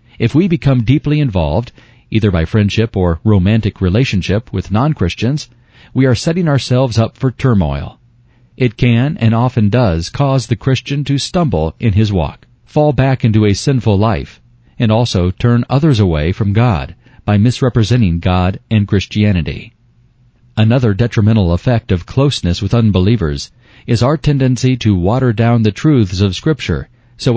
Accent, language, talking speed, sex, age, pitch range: American, English, 150 wpm, male, 40-59, 100-125 Hz